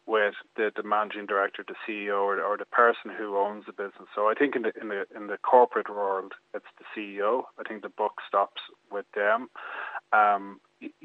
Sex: male